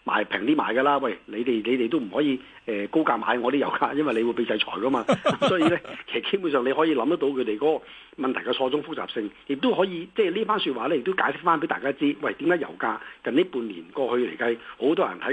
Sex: male